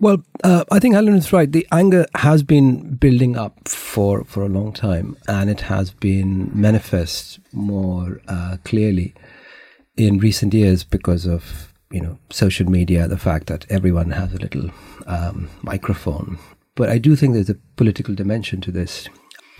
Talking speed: 165 wpm